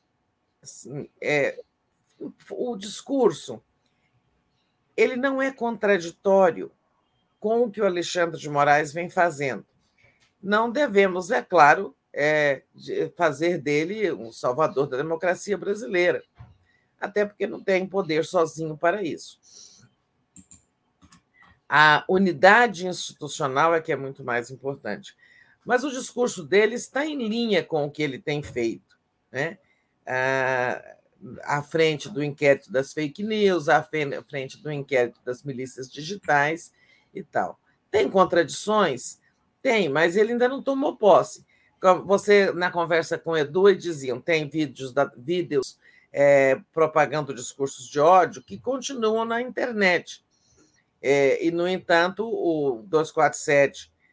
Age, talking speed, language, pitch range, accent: 50-69, 120 wpm, Portuguese, 140-200 Hz, Brazilian